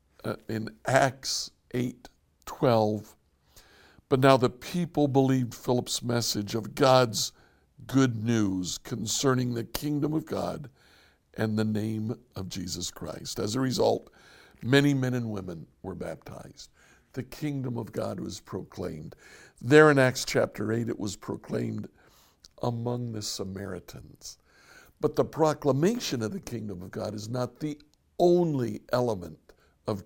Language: English